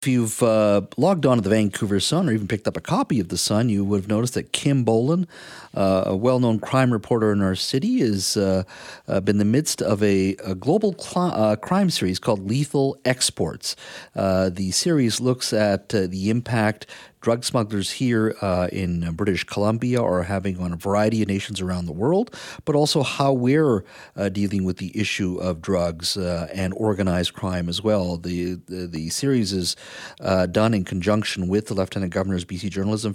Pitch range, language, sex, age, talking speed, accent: 95-115 Hz, English, male, 40-59, 190 wpm, American